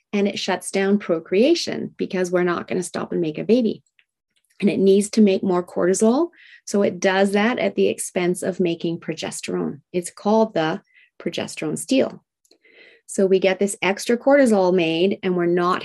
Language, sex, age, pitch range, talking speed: English, female, 30-49, 175-215 Hz, 180 wpm